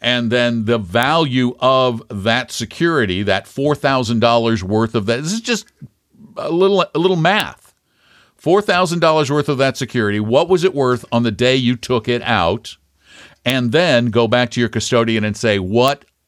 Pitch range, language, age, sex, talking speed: 105-130 Hz, English, 50-69, male, 170 wpm